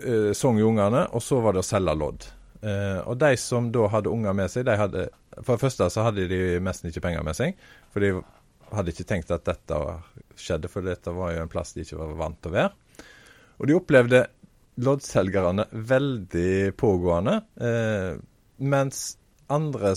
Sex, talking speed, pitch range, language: male, 175 wpm, 100-135 Hz, English